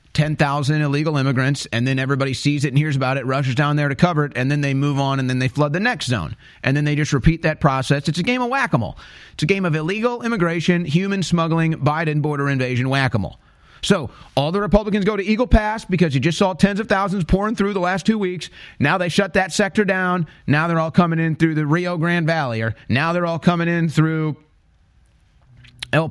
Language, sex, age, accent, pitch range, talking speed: English, male, 30-49, American, 140-200 Hz, 230 wpm